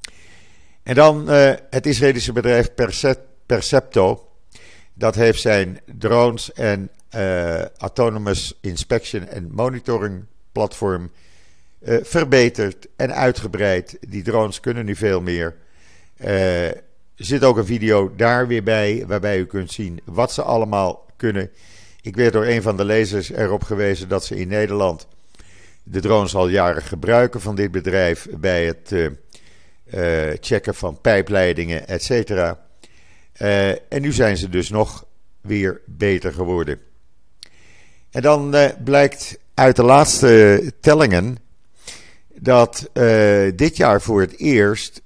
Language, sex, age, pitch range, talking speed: Dutch, male, 50-69, 90-120 Hz, 130 wpm